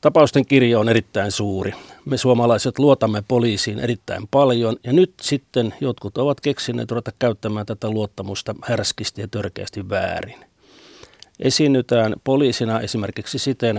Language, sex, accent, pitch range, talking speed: Finnish, male, native, 105-125 Hz, 125 wpm